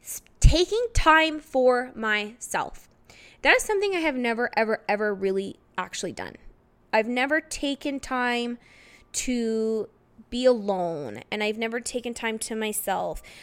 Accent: American